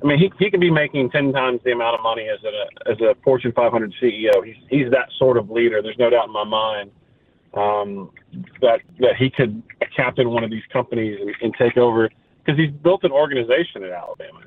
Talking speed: 220 wpm